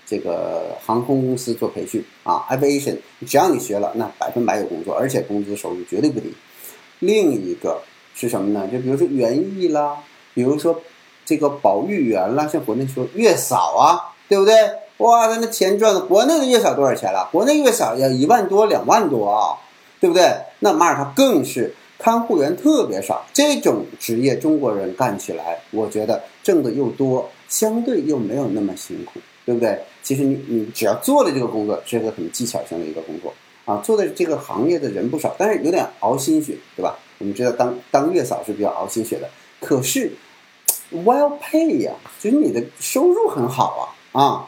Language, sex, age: Chinese, male, 50-69